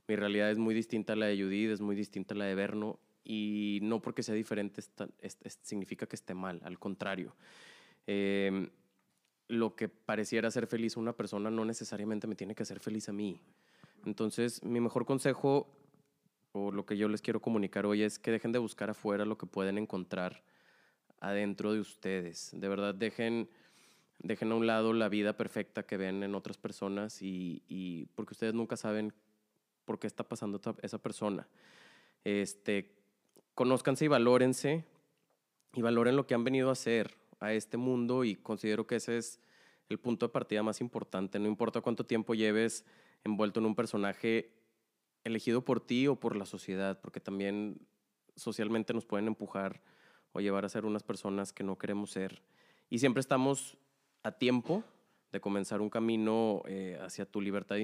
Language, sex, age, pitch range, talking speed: Spanish, male, 20-39, 100-115 Hz, 180 wpm